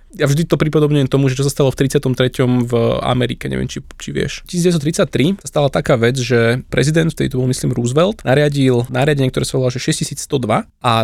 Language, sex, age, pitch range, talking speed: Slovak, male, 20-39, 125-150 Hz, 205 wpm